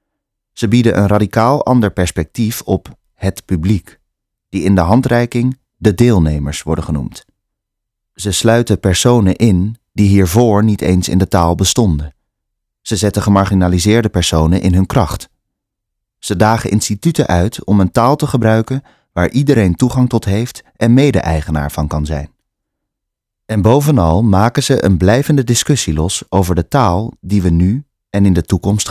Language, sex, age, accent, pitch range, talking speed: Dutch, male, 30-49, Dutch, 90-115 Hz, 150 wpm